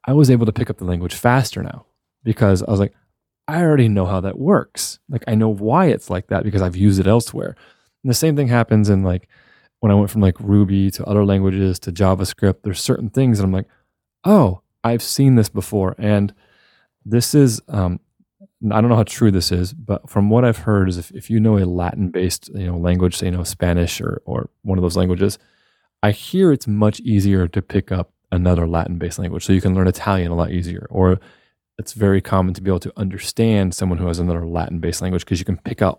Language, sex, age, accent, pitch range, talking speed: English, male, 20-39, American, 90-110 Hz, 225 wpm